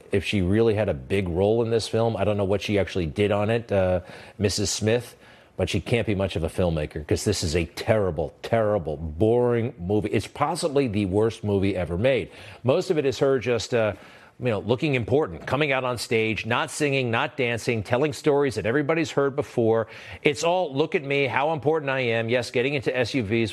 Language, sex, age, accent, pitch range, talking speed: English, male, 40-59, American, 105-130 Hz, 210 wpm